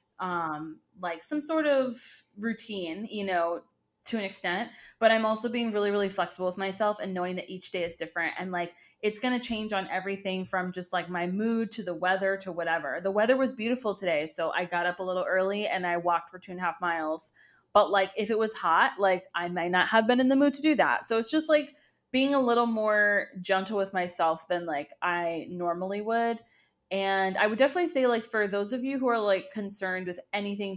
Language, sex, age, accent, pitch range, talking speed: English, female, 20-39, American, 175-215 Hz, 225 wpm